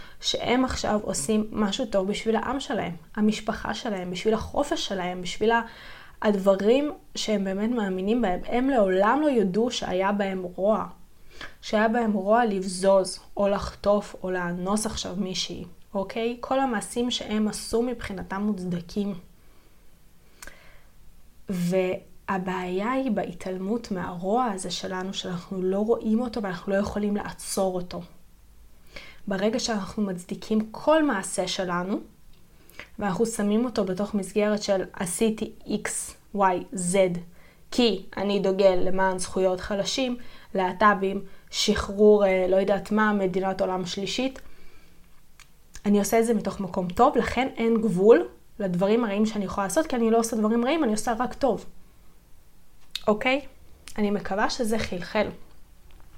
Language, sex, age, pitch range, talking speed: Hebrew, female, 20-39, 190-225 Hz, 125 wpm